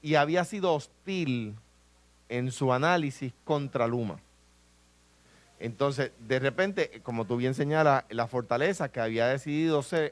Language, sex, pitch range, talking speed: Spanish, male, 120-180 Hz, 130 wpm